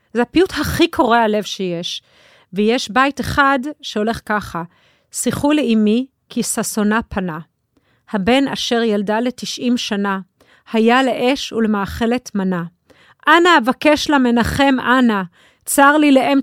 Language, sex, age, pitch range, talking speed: Hebrew, female, 30-49, 215-270 Hz, 115 wpm